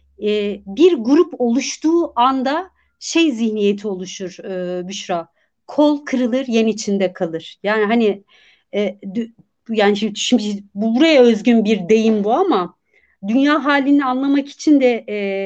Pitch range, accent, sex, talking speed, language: 215-290 Hz, native, female, 135 wpm, Turkish